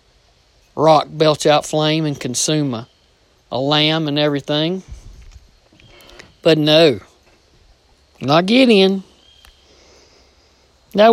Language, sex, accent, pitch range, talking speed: English, male, American, 150-185 Hz, 85 wpm